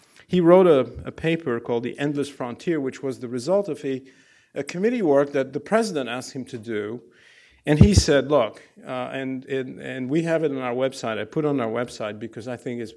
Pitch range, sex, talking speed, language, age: 120-155 Hz, male, 225 wpm, English, 50-69